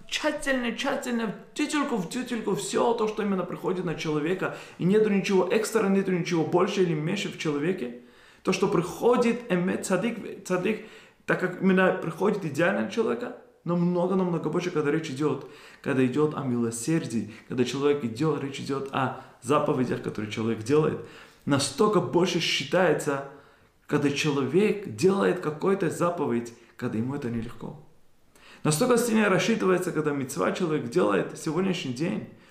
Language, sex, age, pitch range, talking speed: Russian, male, 20-39, 140-190 Hz, 135 wpm